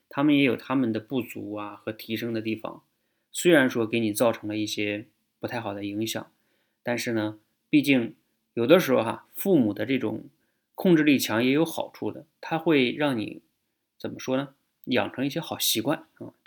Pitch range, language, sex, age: 105-130 Hz, Chinese, male, 20-39